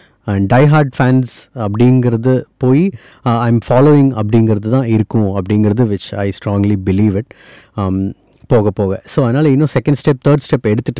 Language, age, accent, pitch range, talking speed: Tamil, 30-49, native, 105-145 Hz, 140 wpm